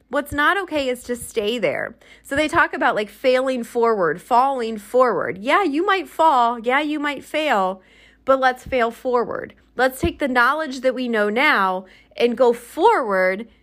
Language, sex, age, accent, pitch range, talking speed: English, female, 30-49, American, 210-275 Hz, 170 wpm